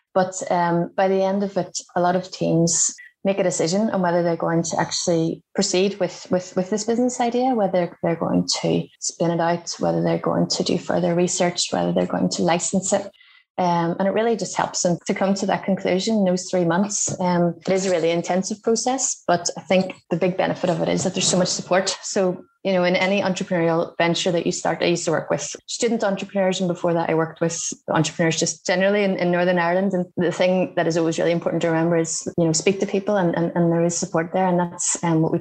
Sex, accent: female, Irish